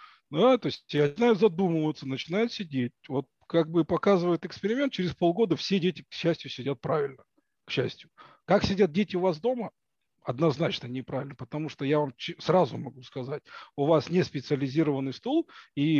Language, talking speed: Russian, 160 wpm